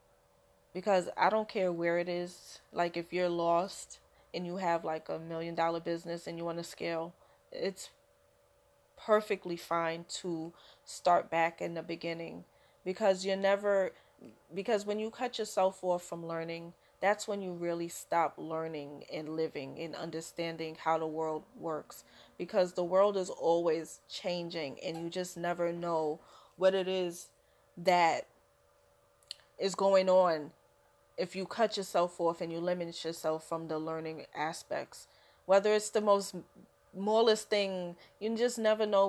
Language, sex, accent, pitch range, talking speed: English, female, American, 165-190 Hz, 150 wpm